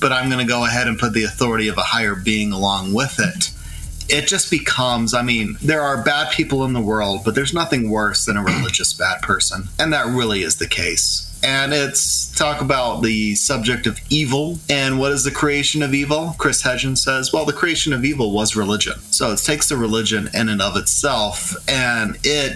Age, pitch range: 30-49, 110-140 Hz